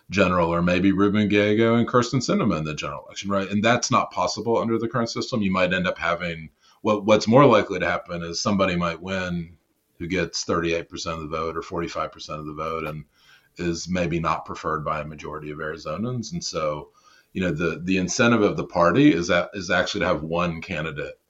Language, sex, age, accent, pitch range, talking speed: English, male, 30-49, American, 80-105 Hz, 215 wpm